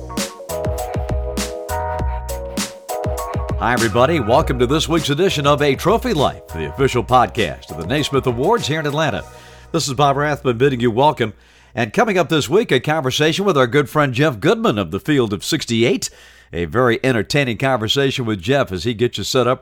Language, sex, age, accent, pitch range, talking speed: English, male, 50-69, American, 95-130 Hz, 175 wpm